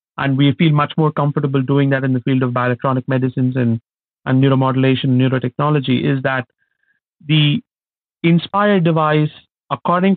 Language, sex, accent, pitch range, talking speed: English, male, Indian, 130-155 Hz, 140 wpm